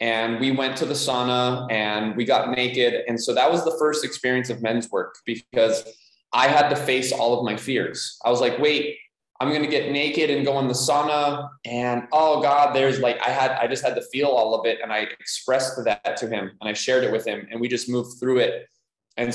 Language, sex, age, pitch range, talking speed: English, male, 20-39, 115-135 Hz, 240 wpm